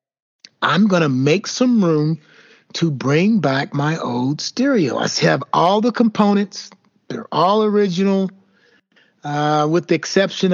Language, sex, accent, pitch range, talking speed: English, male, American, 145-190 Hz, 135 wpm